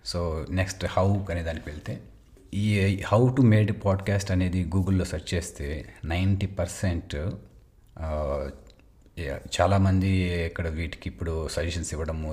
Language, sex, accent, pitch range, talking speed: Telugu, male, native, 80-95 Hz, 110 wpm